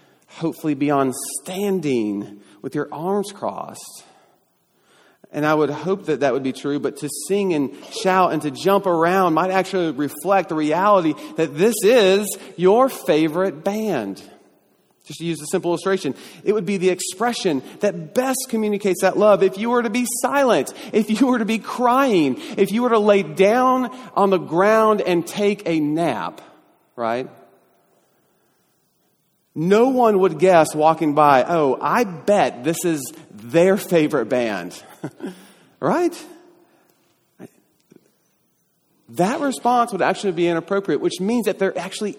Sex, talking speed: male, 150 wpm